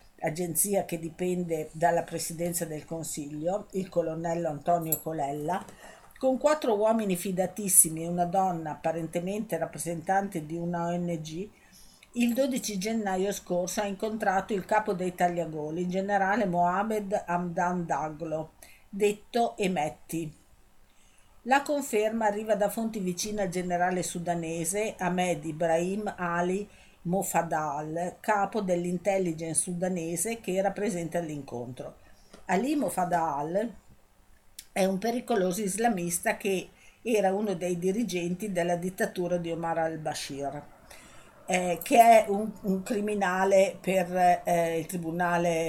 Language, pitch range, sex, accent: Italian, 165-205 Hz, female, native